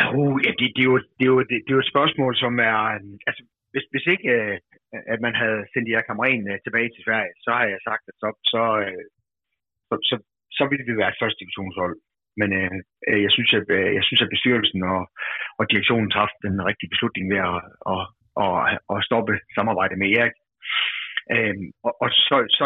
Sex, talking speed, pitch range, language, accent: male, 175 wpm, 100-130 Hz, Danish, native